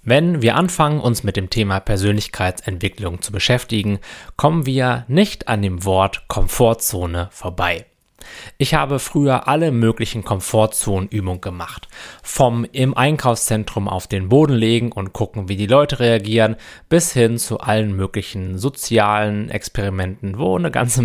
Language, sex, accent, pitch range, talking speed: German, male, German, 95-120 Hz, 135 wpm